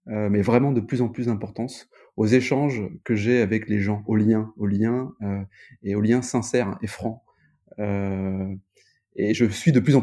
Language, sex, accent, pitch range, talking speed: French, male, French, 100-125 Hz, 195 wpm